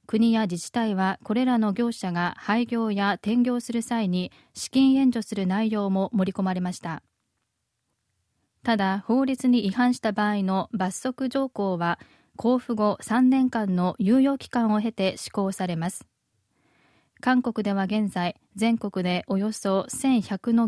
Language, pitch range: Japanese, 195-240 Hz